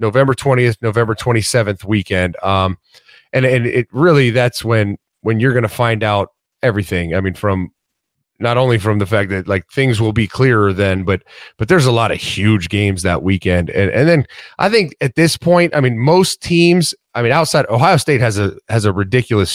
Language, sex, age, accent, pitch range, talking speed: English, male, 30-49, American, 110-145 Hz, 205 wpm